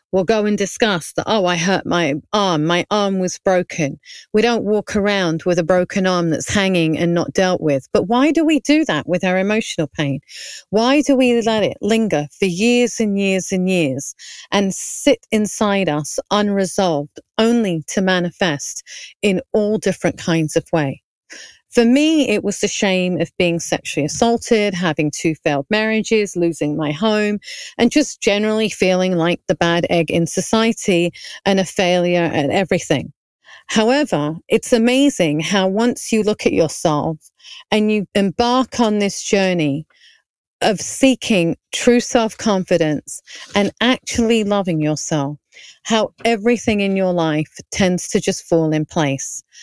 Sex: female